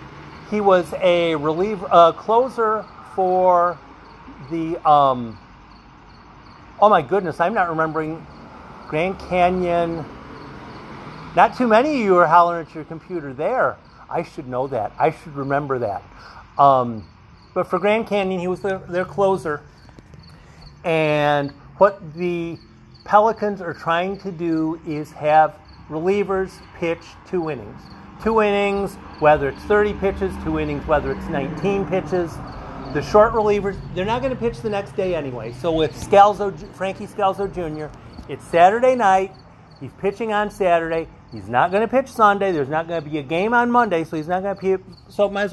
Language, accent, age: English, American, 50-69